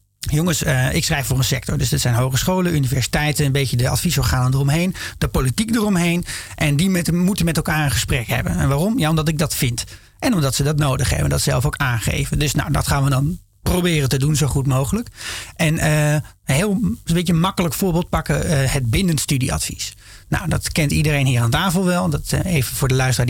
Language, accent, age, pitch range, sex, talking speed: Dutch, Dutch, 40-59, 125-155 Hz, male, 215 wpm